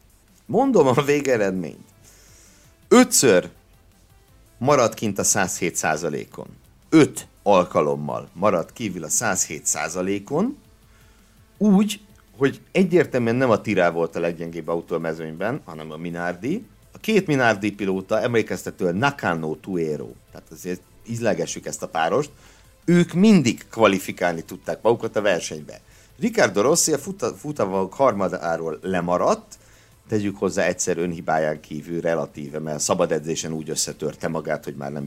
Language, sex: Hungarian, male